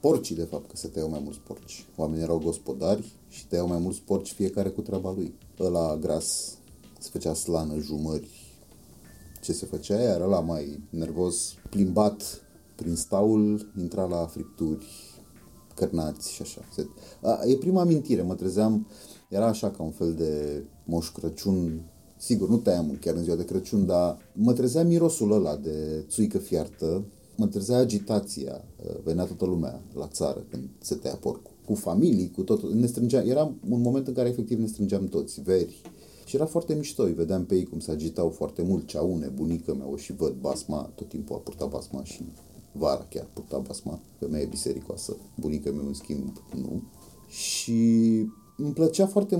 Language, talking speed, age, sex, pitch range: Romanian, 170 wpm, 30-49, male, 80-120 Hz